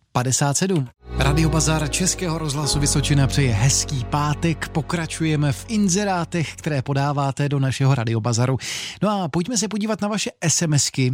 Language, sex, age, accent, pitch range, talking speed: Czech, male, 30-49, native, 125-160 Hz, 130 wpm